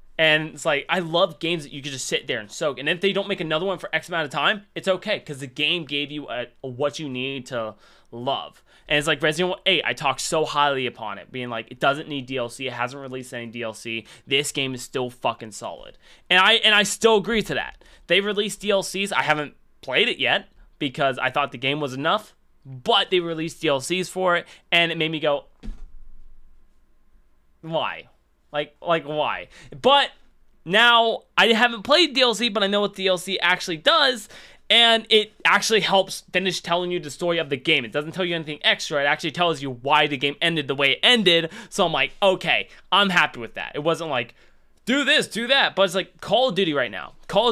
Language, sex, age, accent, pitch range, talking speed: English, male, 20-39, American, 135-190 Hz, 220 wpm